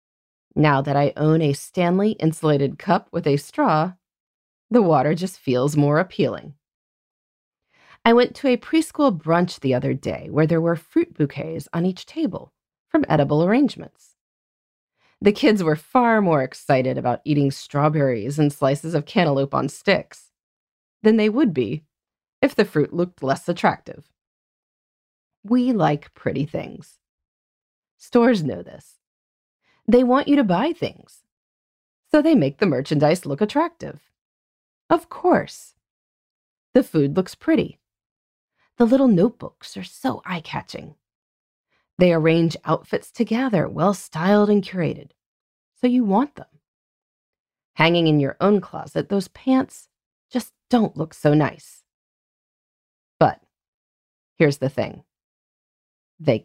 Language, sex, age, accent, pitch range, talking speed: English, female, 30-49, American, 145-230 Hz, 130 wpm